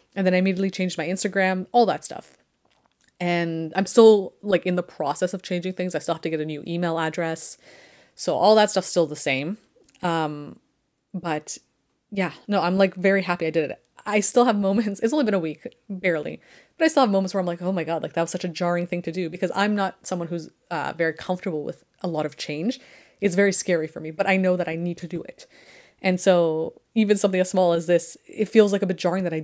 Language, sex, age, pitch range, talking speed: English, female, 30-49, 170-200 Hz, 245 wpm